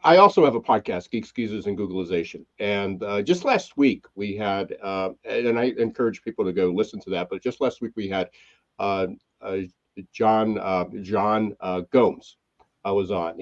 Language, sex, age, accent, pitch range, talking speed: English, male, 60-79, American, 95-130 Hz, 190 wpm